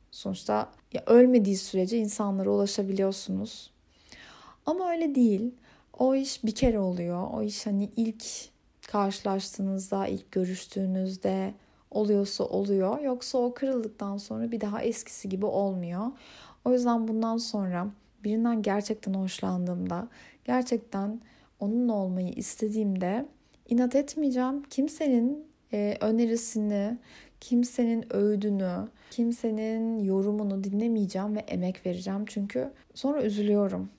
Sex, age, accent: female, 30-49, native